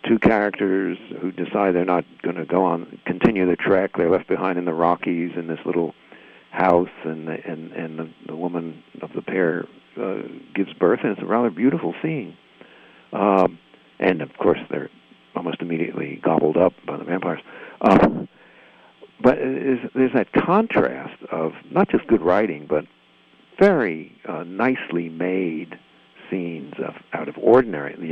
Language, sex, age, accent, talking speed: English, male, 60-79, American, 165 wpm